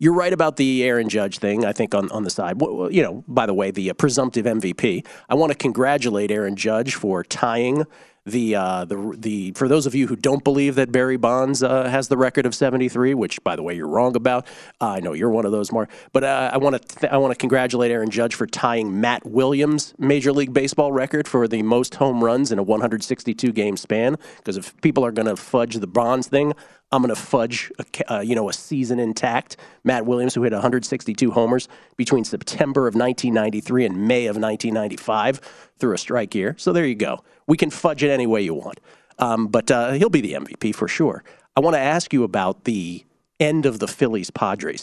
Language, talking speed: English, 220 wpm